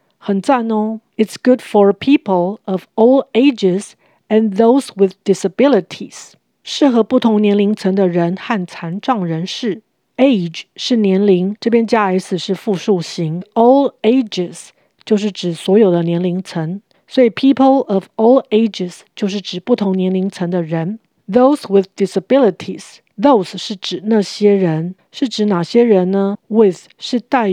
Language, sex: Chinese, female